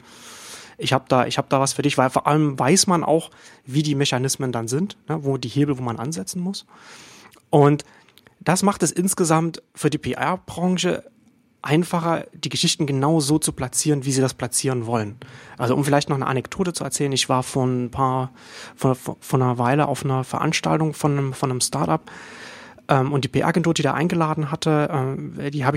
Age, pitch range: 30-49, 130-160 Hz